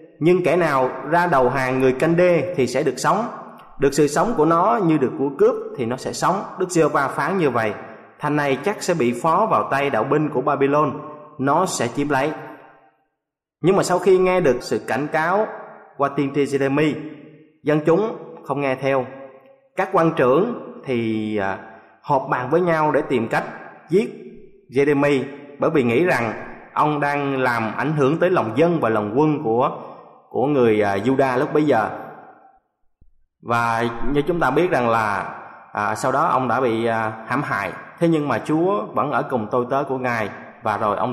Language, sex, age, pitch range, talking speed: Vietnamese, male, 20-39, 130-170 Hz, 190 wpm